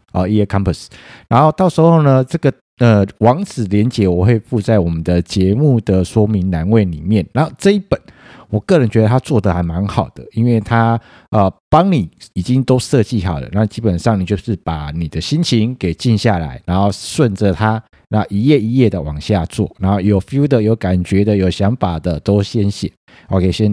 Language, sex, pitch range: Chinese, male, 95-130 Hz